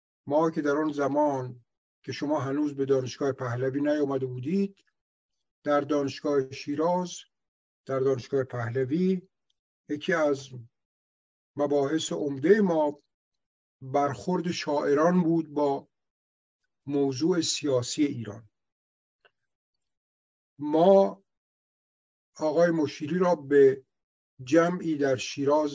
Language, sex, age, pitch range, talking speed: Persian, male, 50-69, 125-155 Hz, 90 wpm